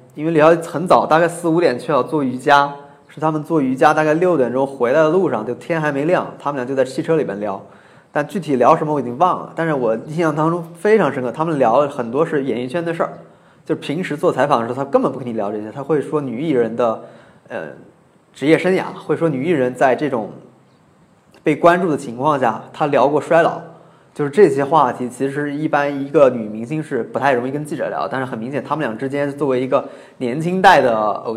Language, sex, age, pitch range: Chinese, male, 20-39, 130-160 Hz